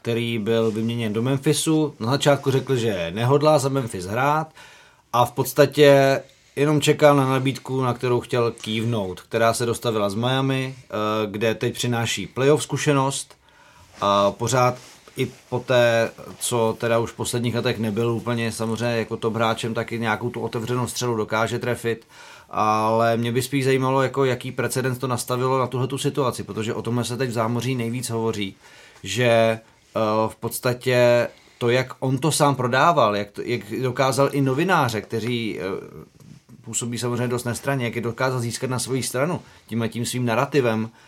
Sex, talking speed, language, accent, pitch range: male, 165 wpm, Czech, native, 115-130 Hz